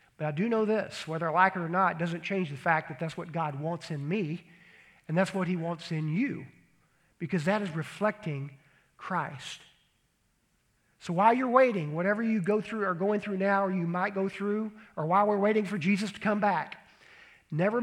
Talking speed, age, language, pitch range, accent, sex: 210 wpm, 50-69, English, 165-210 Hz, American, male